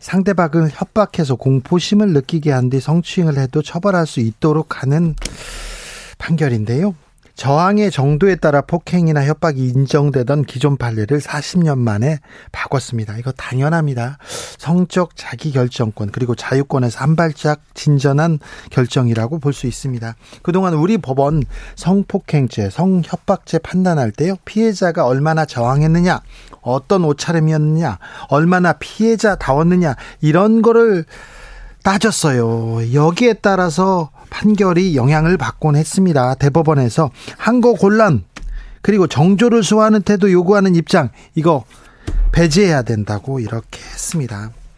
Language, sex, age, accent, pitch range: Korean, male, 40-59, native, 135-185 Hz